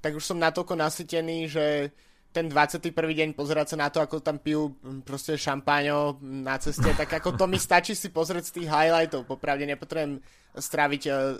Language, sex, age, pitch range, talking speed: Slovak, male, 20-39, 140-155 Hz, 180 wpm